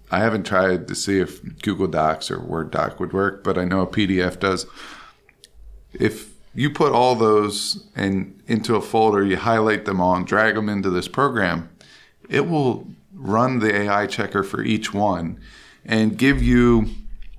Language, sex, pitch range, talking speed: English, male, 95-110 Hz, 170 wpm